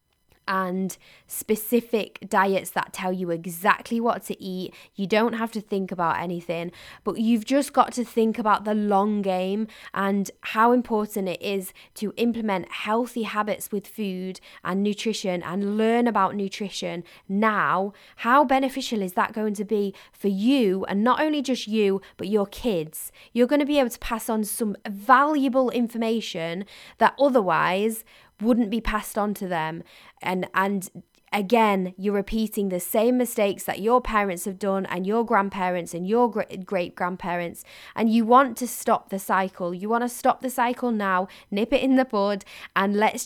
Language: English